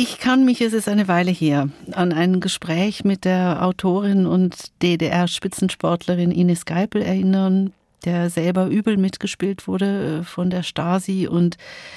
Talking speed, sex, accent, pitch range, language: 140 wpm, female, German, 165-195 Hz, German